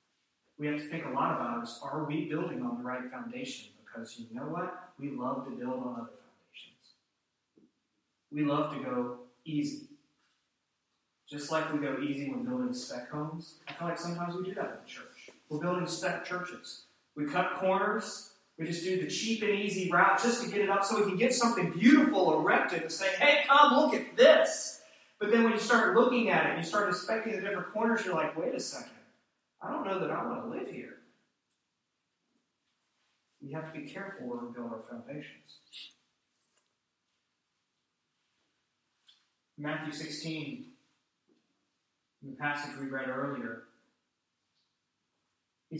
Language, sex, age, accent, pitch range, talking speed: English, male, 30-49, American, 140-230 Hz, 170 wpm